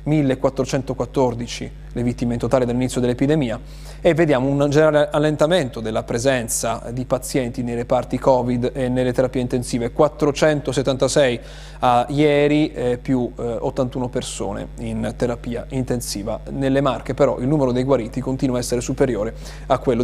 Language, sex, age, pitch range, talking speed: Italian, male, 30-49, 130-175 Hz, 130 wpm